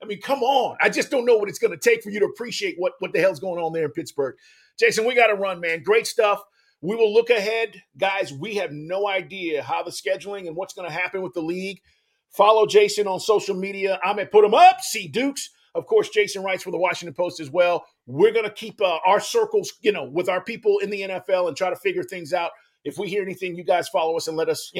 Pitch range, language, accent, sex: 170-235 Hz, English, American, male